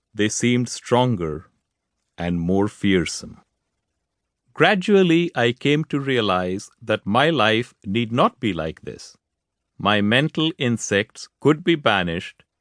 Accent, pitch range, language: Indian, 105-150 Hz, English